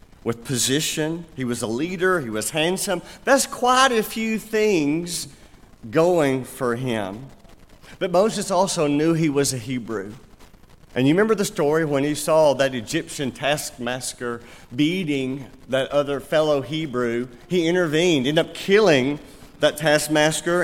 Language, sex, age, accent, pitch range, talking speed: English, male, 40-59, American, 135-190 Hz, 140 wpm